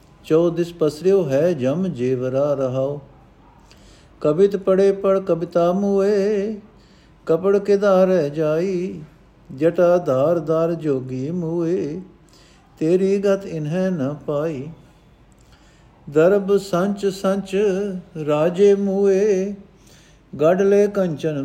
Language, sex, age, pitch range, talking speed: Punjabi, male, 50-69, 145-190 Hz, 90 wpm